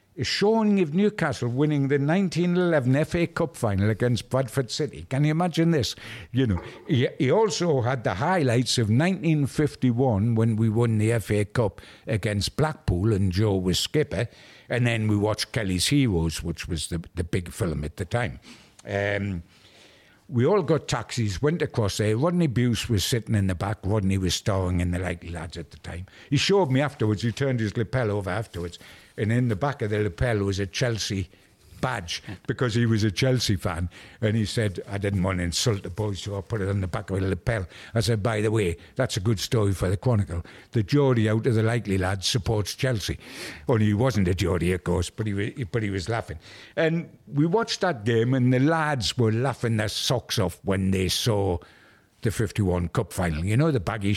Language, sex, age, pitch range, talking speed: English, male, 60-79, 95-130 Hz, 205 wpm